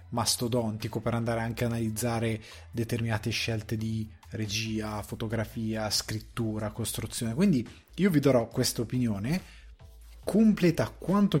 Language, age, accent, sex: Italian, 20-39, native, male